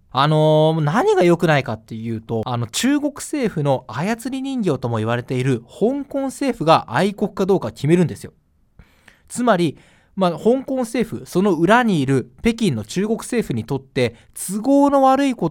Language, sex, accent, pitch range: Japanese, male, native, 135-220 Hz